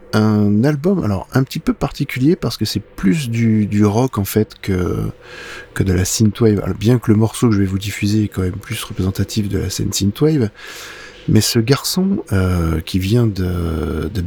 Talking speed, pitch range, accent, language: 200 wpm, 100-125 Hz, French, French